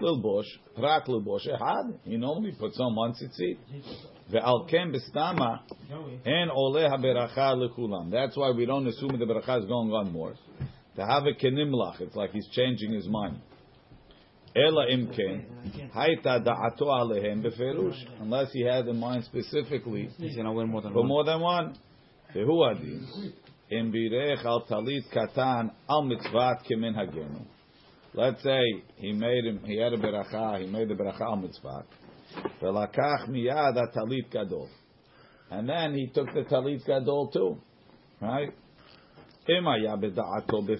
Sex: male